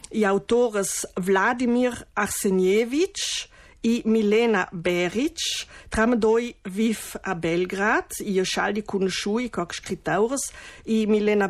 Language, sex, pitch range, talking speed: Italian, female, 195-245 Hz, 105 wpm